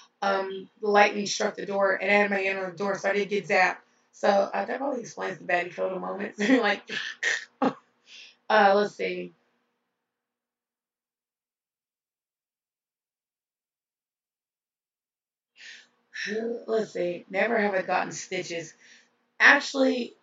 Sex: female